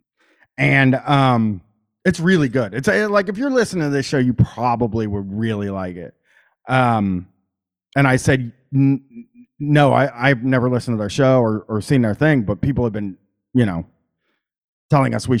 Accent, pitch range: American, 105-175 Hz